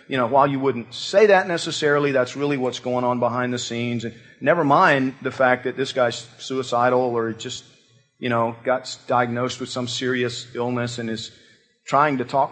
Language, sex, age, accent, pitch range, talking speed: English, male, 40-59, American, 125-155 Hz, 190 wpm